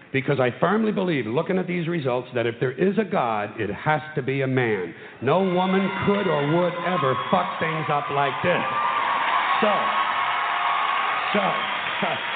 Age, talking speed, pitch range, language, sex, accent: 60-79, 160 wpm, 130-180 Hz, English, male, American